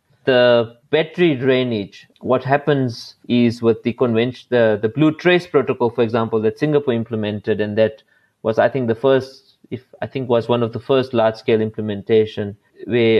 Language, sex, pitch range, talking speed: English, male, 110-130 Hz, 175 wpm